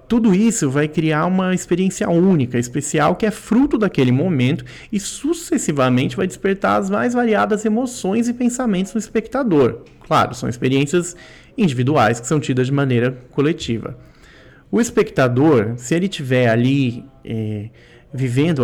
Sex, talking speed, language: male, 135 wpm, Portuguese